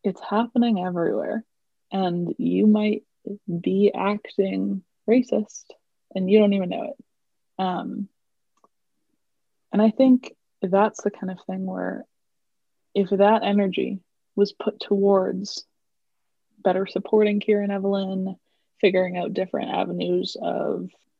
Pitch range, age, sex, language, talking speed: 190-225 Hz, 20-39, female, English, 115 wpm